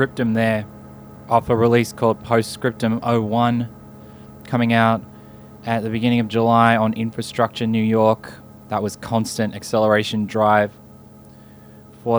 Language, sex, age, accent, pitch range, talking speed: English, male, 20-39, Australian, 100-115 Hz, 120 wpm